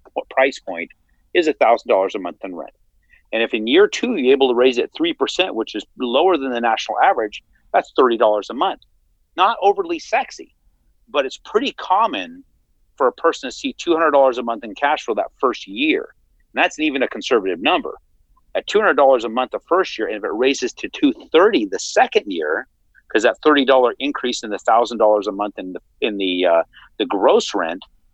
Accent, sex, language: American, male, English